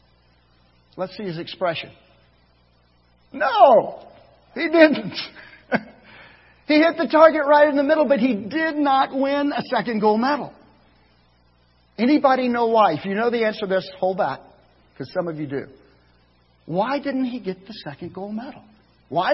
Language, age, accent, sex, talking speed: English, 50-69, American, male, 155 wpm